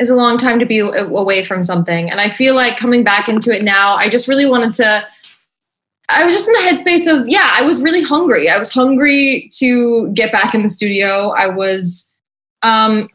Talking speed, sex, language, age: 215 wpm, female, English, 20-39